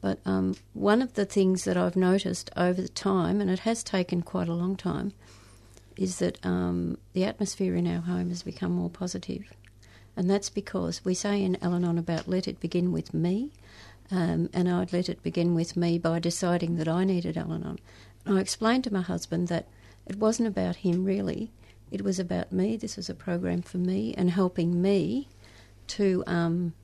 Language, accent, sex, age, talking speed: English, Australian, female, 60-79, 190 wpm